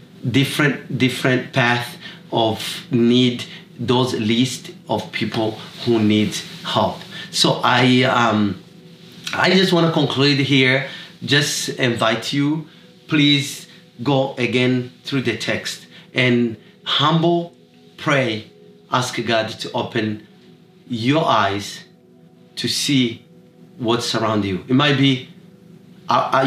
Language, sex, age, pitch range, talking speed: English, male, 30-49, 115-155 Hz, 110 wpm